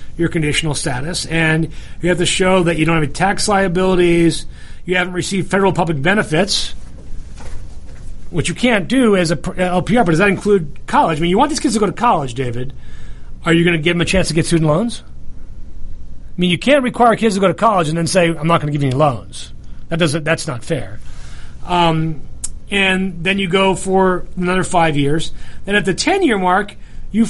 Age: 30-49